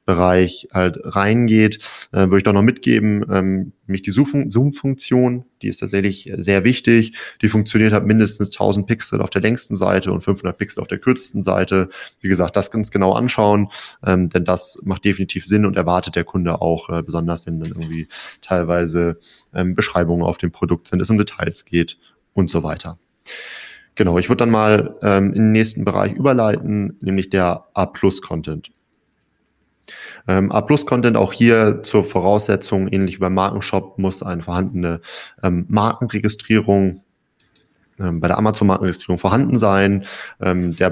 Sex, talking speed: male, 155 wpm